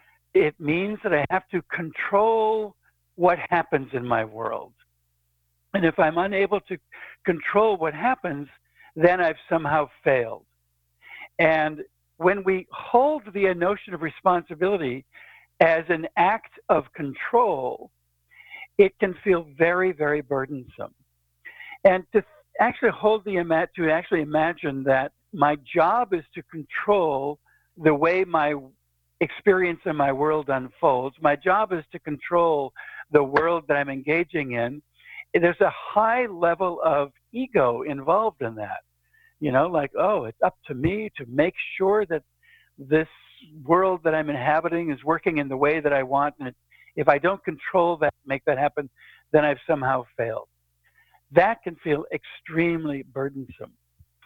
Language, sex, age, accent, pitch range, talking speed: English, male, 60-79, American, 140-185 Hz, 140 wpm